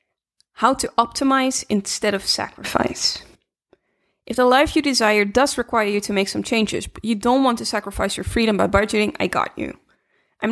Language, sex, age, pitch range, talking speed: English, female, 20-39, 205-255 Hz, 185 wpm